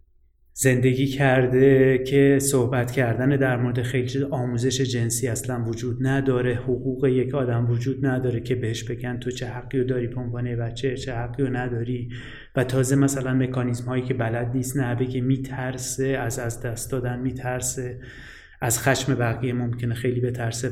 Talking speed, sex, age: 155 wpm, male, 30-49